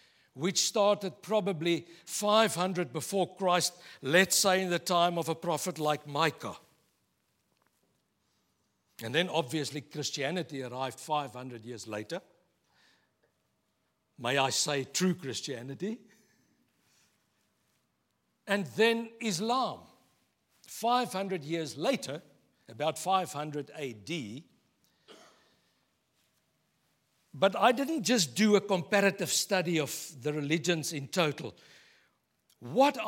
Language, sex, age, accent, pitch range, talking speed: English, male, 60-79, South African, 150-215 Hz, 95 wpm